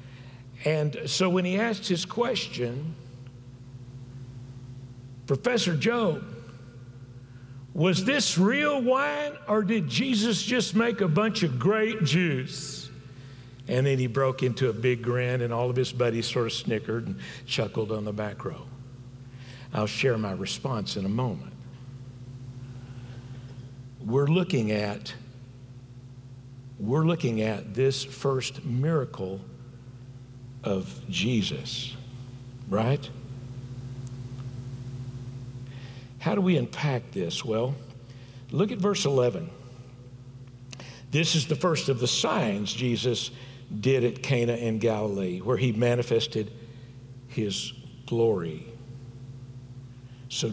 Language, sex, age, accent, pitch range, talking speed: English, male, 60-79, American, 125-140 Hz, 110 wpm